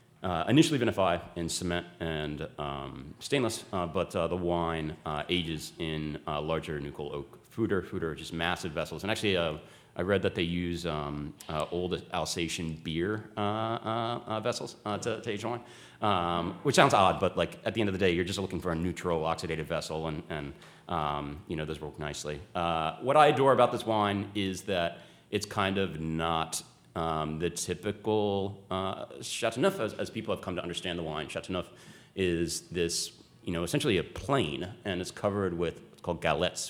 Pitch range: 80-100 Hz